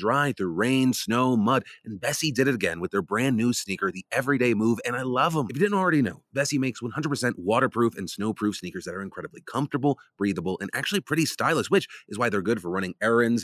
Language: English